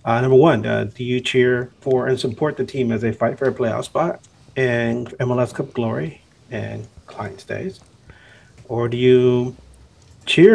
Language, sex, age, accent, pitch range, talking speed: English, male, 40-59, American, 115-140 Hz, 170 wpm